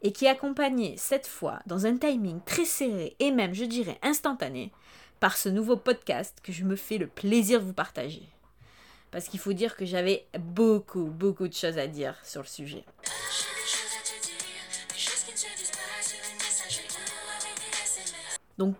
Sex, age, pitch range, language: female, 20-39, 190-265 Hz, French